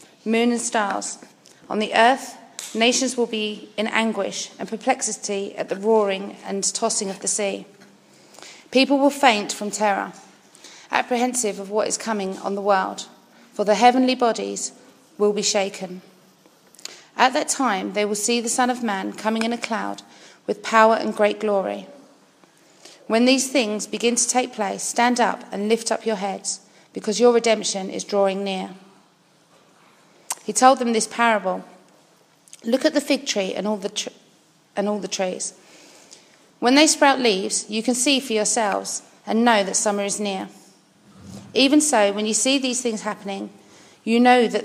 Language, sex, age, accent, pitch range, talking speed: English, female, 30-49, British, 200-240 Hz, 165 wpm